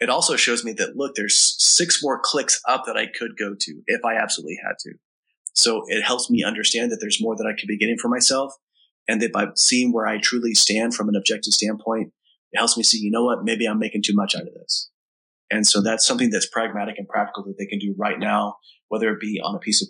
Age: 30-49